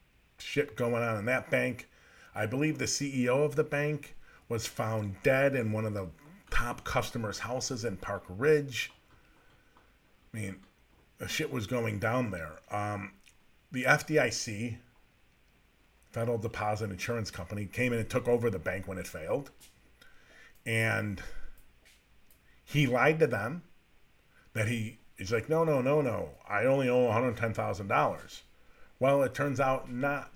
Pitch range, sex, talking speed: 110-140 Hz, male, 145 wpm